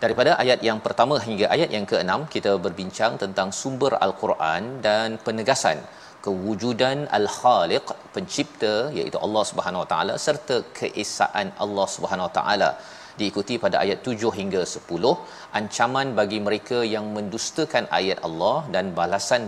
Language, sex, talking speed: Malayalam, male, 135 wpm